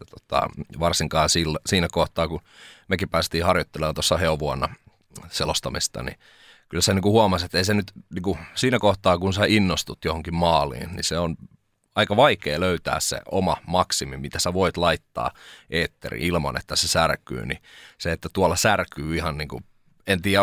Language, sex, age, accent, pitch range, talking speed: Finnish, male, 30-49, native, 80-95 Hz, 165 wpm